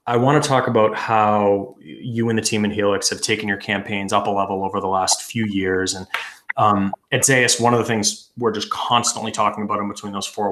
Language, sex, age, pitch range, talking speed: English, male, 20-39, 100-115 Hz, 235 wpm